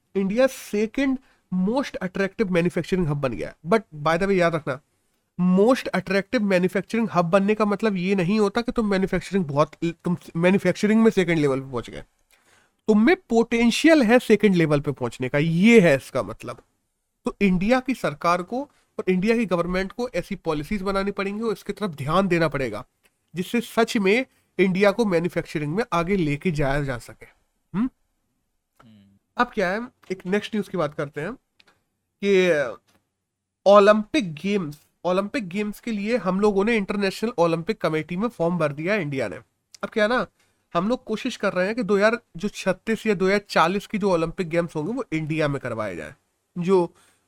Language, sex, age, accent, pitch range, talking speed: Hindi, male, 30-49, native, 165-215 Hz, 100 wpm